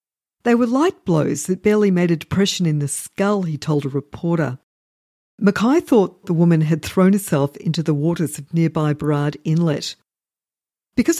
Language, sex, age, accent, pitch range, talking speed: English, female, 50-69, Australian, 160-210 Hz, 165 wpm